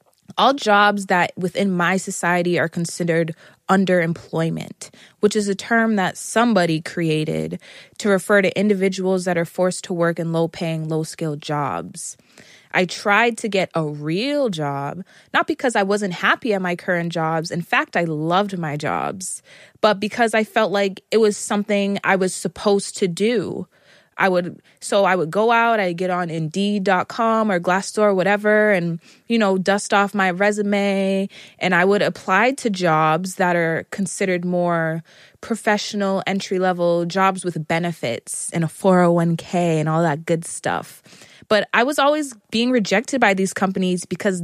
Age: 20-39